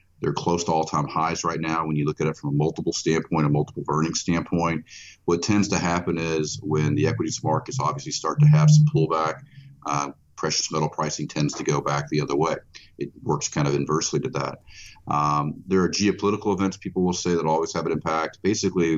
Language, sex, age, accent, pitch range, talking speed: English, male, 40-59, American, 75-90 Hz, 210 wpm